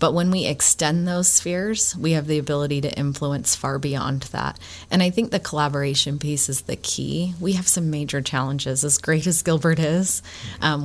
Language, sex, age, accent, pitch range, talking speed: English, female, 30-49, American, 140-165 Hz, 195 wpm